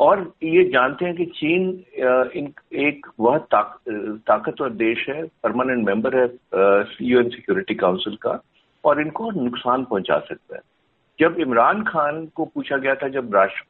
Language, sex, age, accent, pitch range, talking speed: Hindi, male, 50-69, native, 125-190 Hz, 155 wpm